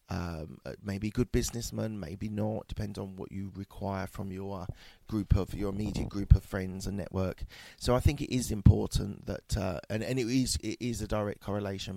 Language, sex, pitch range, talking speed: English, male, 95-110 Hz, 195 wpm